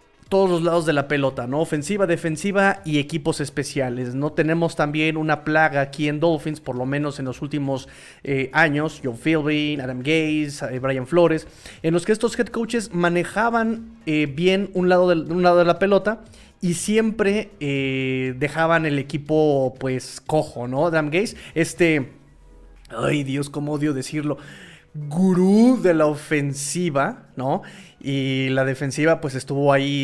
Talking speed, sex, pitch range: 155 wpm, male, 145-185 Hz